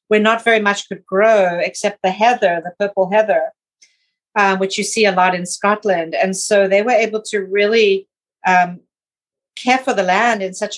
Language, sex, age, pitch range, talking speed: English, female, 50-69, 190-215 Hz, 190 wpm